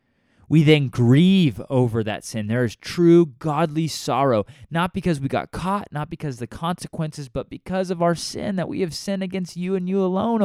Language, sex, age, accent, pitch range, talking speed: English, male, 20-39, American, 105-165 Hz, 200 wpm